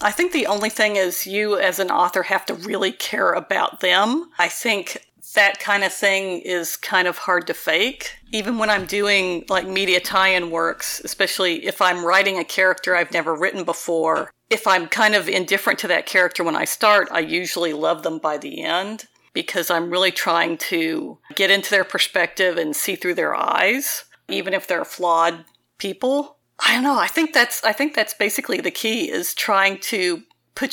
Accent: American